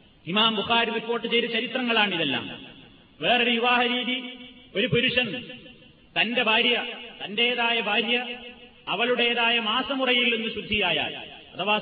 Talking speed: 90 wpm